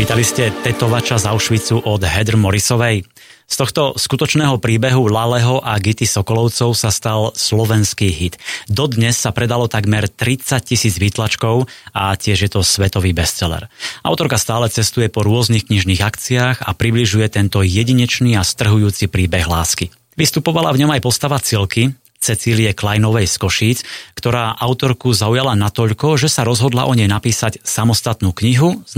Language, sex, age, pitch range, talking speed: Slovak, male, 30-49, 105-125 Hz, 150 wpm